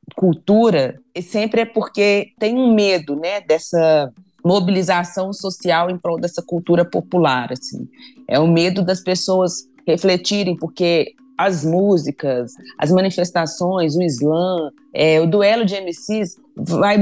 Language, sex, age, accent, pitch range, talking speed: Portuguese, female, 30-49, Brazilian, 155-205 Hz, 135 wpm